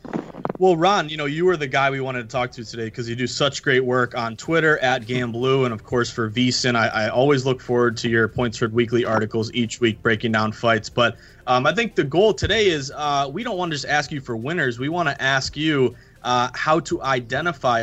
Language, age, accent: English, 20-39, American